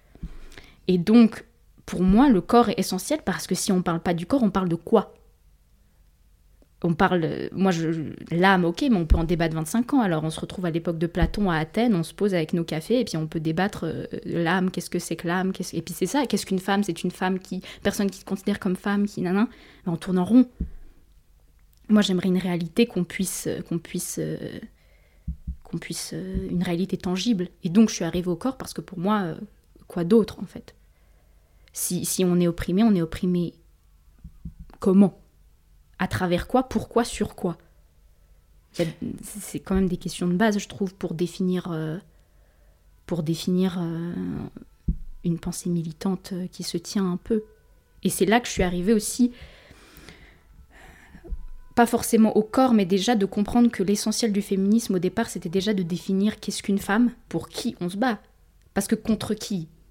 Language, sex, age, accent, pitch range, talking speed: French, female, 20-39, French, 165-205 Hz, 185 wpm